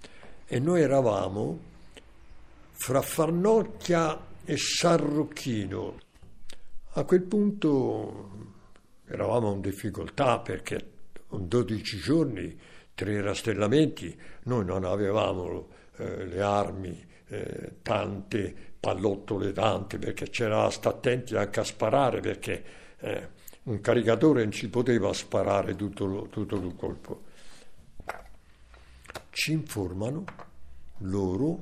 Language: Italian